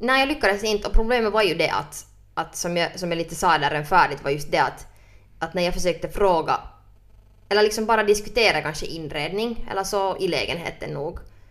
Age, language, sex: 20-39, Swedish, female